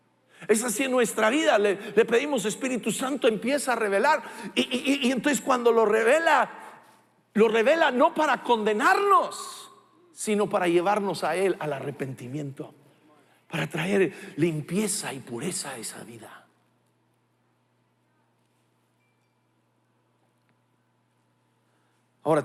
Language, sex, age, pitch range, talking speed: English, male, 50-69, 170-235 Hz, 110 wpm